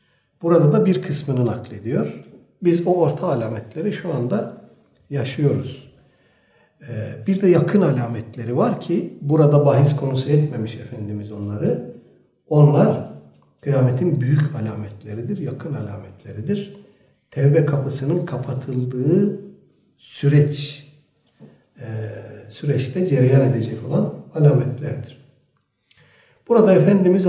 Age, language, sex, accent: 60-79, Turkish, male, native